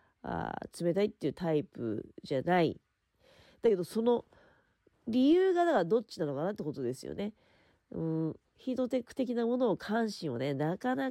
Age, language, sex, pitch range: 40-59, Japanese, female, 140-220 Hz